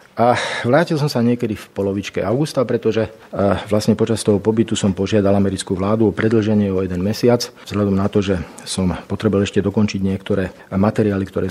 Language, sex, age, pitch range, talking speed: Slovak, male, 40-59, 100-125 Hz, 170 wpm